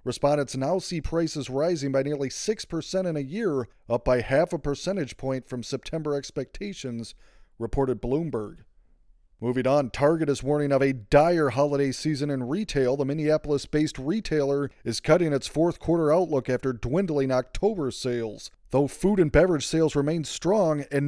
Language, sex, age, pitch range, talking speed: English, male, 30-49, 130-165 Hz, 155 wpm